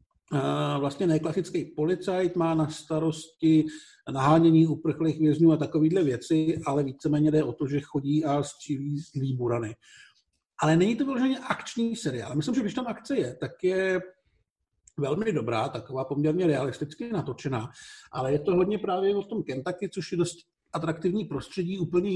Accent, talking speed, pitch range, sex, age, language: native, 155 wpm, 145-170 Hz, male, 50-69, Czech